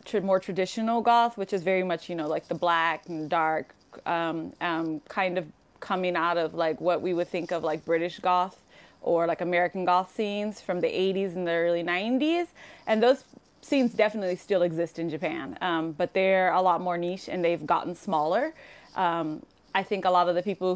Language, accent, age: English, American, 20-39